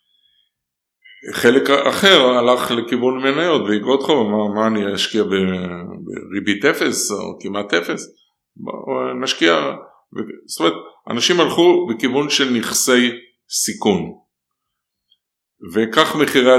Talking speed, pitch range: 95 wpm, 95-125 Hz